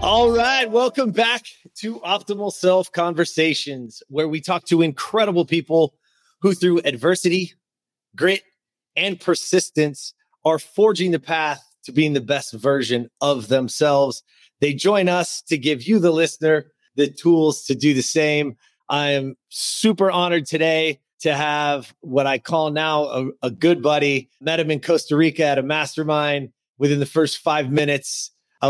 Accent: American